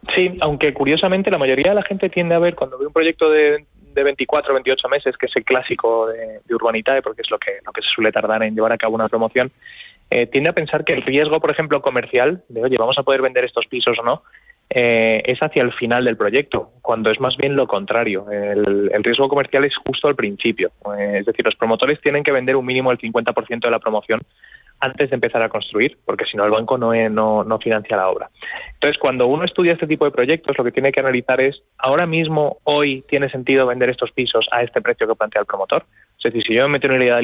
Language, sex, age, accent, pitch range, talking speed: Spanish, male, 20-39, Spanish, 115-145 Hz, 245 wpm